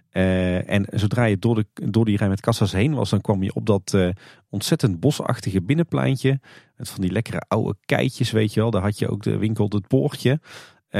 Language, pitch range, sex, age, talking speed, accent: Dutch, 95-130 Hz, male, 40-59, 220 wpm, Dutch